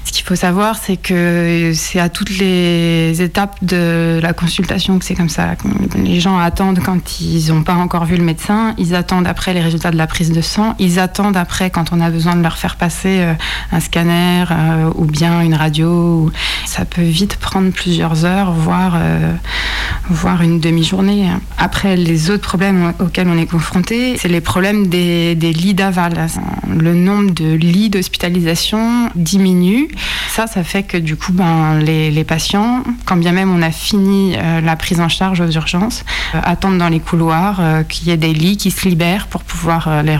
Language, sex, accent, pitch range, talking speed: French, female, French, 165-185 Hz, 190 wpm